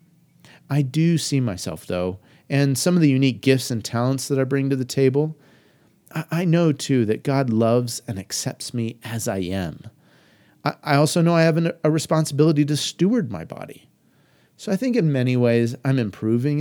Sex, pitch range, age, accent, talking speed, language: male, 115-155 Hz, 30-49, American, 190 wpm, English